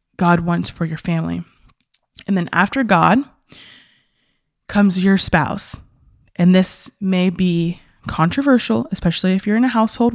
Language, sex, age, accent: English, female, 20-39, American